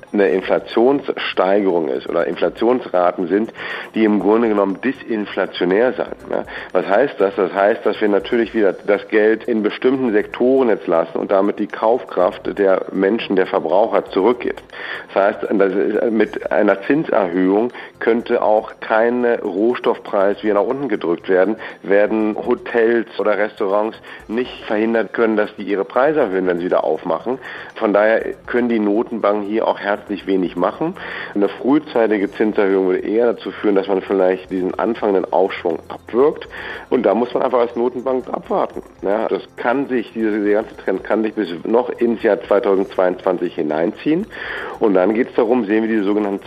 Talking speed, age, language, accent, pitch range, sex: 160 wpm, 50-69, German, German, 100-120 Hz, male